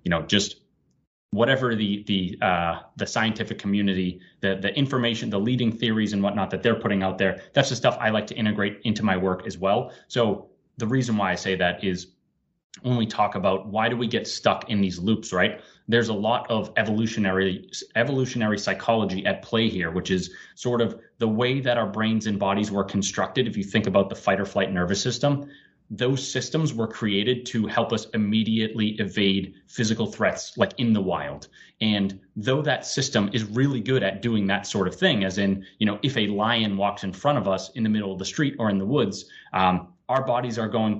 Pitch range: 100-120 Hz